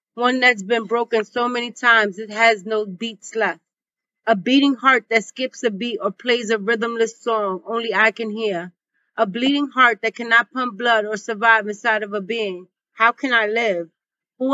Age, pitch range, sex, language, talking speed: 30-49, 215-245 Hz, female, English, 190 wpm